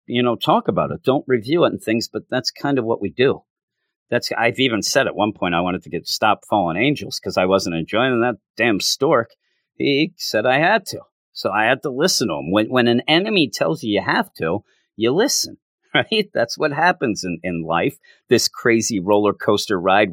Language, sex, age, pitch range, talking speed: English, male, 50-69, 95-125 Hz, 215 wpm